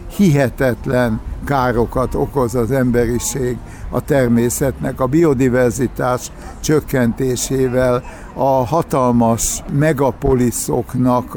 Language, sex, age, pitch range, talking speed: Hungarian, male, 60-79, 120-140 Hz, 70 wpm